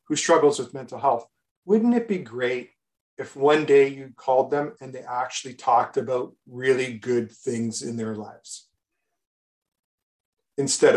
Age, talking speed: 40-59, 150 wpm